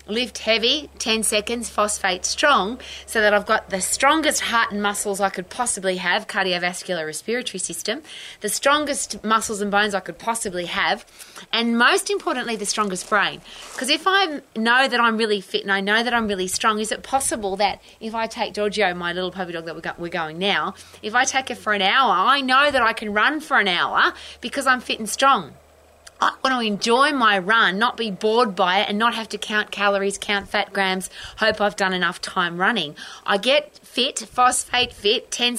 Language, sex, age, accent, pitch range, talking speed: English, female, 30-49, Australian, 195-240 Hz, 205 wpm